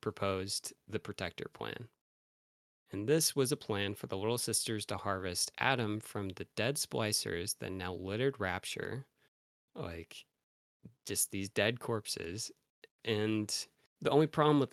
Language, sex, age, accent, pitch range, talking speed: English, male, 20-39, American, 95-115 Hz, 140 wpm